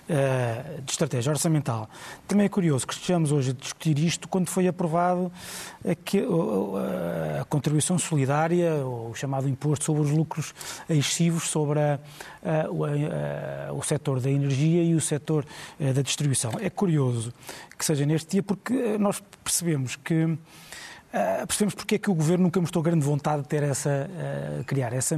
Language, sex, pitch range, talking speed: Portuguese, male, 135-170 Hz, 155 wpm